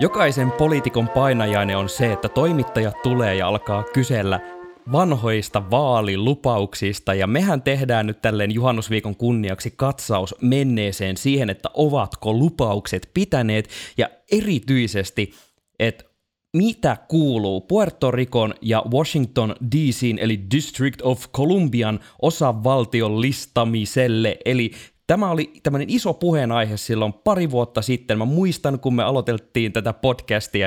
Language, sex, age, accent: Finnish, male, 20-39, native